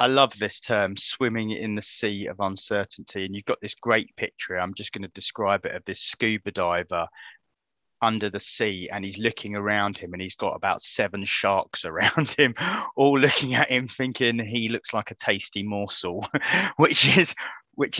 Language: English